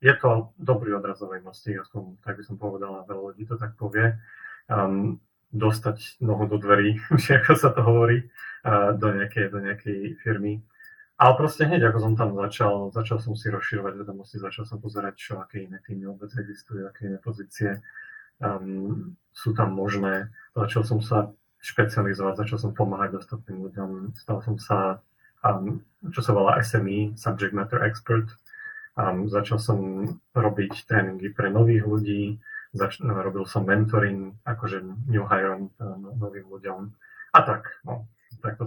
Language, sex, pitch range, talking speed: Slovak, male, 100-120 Hz, 155 wpm